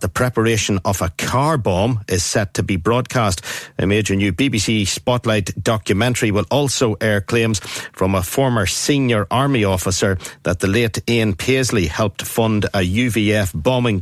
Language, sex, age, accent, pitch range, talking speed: English, male, 60-79, Irish, 95-115 Hz, 160 wpm